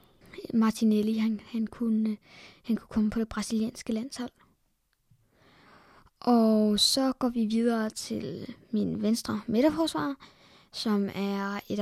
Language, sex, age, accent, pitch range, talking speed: Danish, female, 20-39, native, 215-245 Hz, 115 wpm